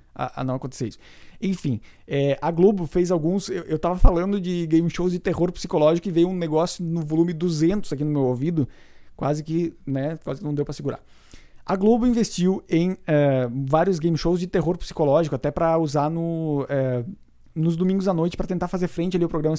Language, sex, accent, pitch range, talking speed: Portuguese, male, Brazilian, 140-175 Hz, 195 wpm